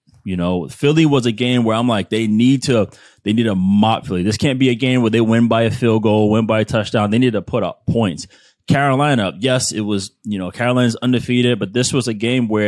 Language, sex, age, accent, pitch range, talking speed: English, male, 30-49, American, 95-125 Hz, 250 wpm